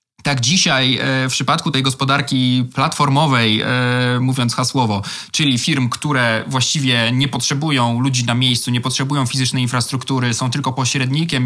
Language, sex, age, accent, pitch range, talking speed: Polish, male, 20-39, native, 125-145 Hz, 130 wpm